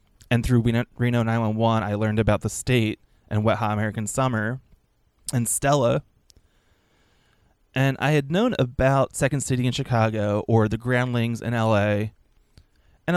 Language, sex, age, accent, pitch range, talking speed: English, male, 20-39, American, 110-140 Hz, 145 wpm